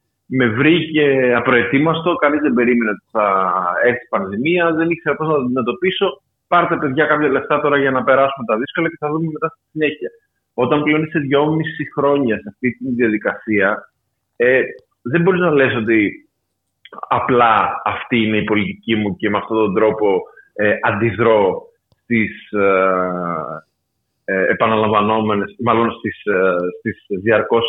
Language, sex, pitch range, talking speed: Greek, male, 115-185 Hz, 145 wpm